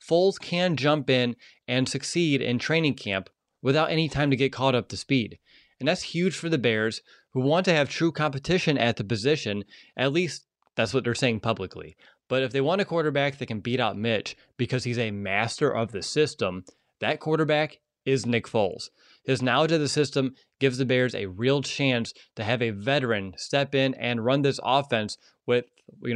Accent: American